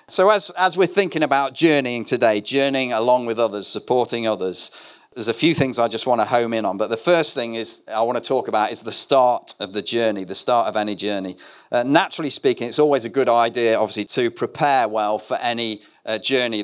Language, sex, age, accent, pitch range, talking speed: English, male, 40-59, British, 105-130 Hz, 225 wpm